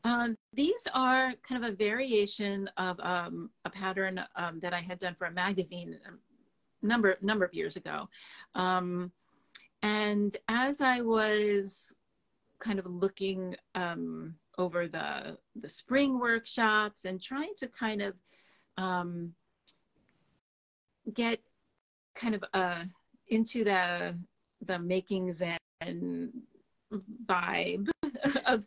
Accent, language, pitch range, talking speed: American, English, 180-225 Hz, 115 wpm